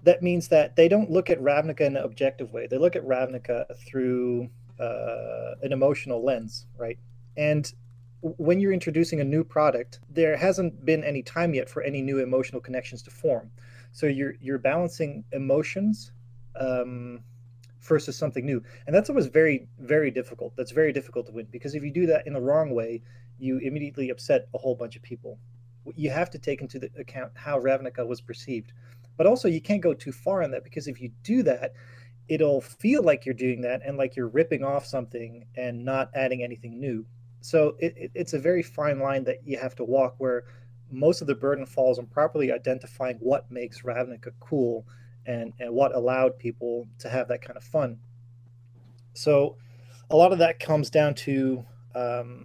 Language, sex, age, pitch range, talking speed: English, male, 30-49, 120-150 Hz, 190 wpm